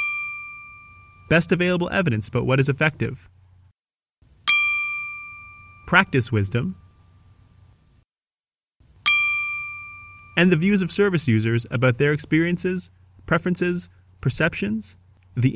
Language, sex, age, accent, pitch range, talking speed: English, male, 30-49, American, 110-175 Hz, 80 wpm